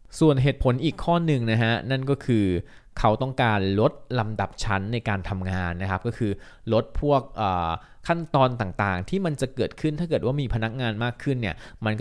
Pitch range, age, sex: 95-125 Hz, 20-39, male